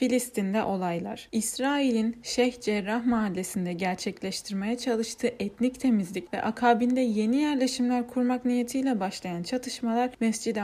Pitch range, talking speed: 205-250 Hz, 105 wpm